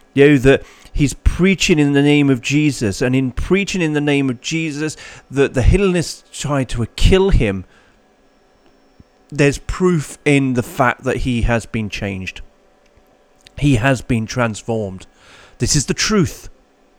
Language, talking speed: English, 150 wpm